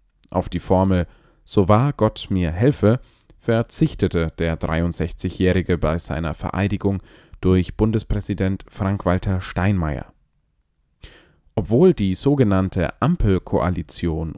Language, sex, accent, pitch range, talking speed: German, male, German, 90-115 Hz, 90 wpm